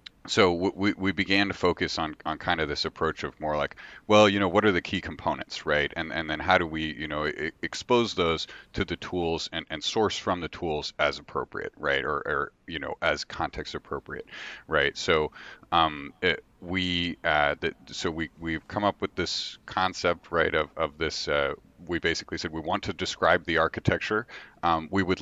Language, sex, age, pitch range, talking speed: English, male, 40-59, 80-95 Hz, 200 wpm